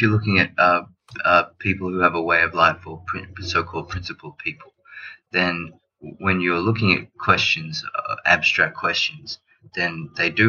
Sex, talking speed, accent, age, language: male, 160 wpm, Australian, 30-49, English